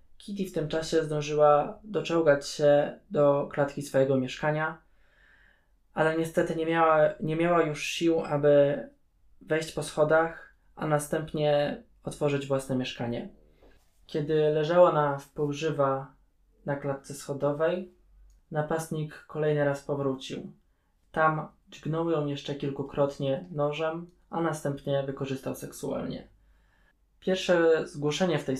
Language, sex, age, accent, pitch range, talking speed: Polish, male, 20-39, native, 135-160 Hz, 110 wpm